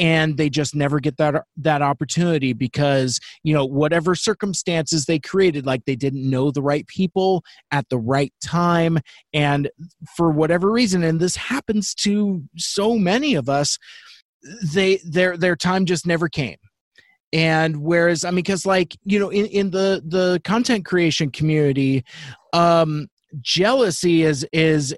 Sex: male